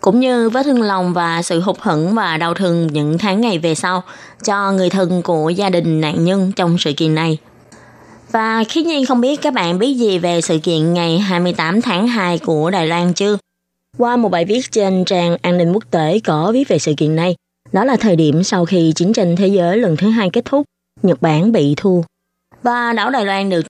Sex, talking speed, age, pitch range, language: female, 225 wpm, 20-39, 170-220 Hz, Vietnamese